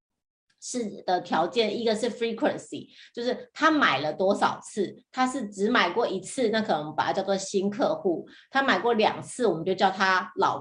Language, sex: Chinese, female